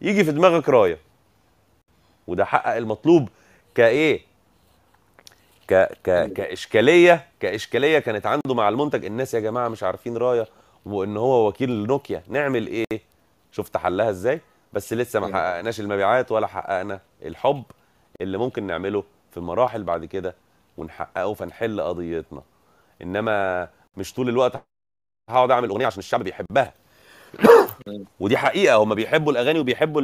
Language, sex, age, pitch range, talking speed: Arabic, male, 30-49, 95-140 Hz, 130 wpm